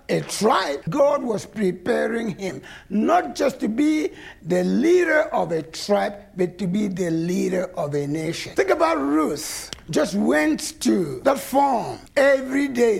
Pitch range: 185-300 Hz